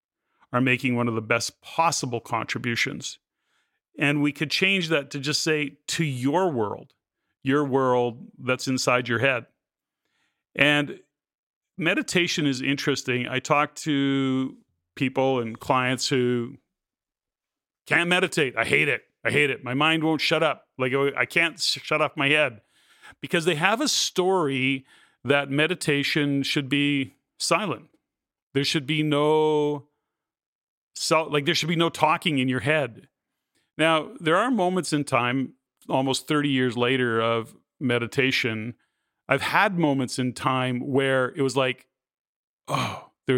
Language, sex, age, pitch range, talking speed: English, male, 40-59, 130-160 Hz, 140 wpm